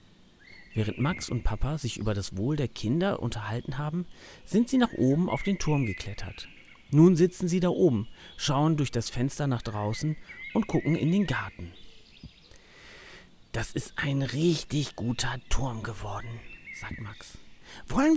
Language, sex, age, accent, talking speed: German, male, 40-59, German, 150 wpm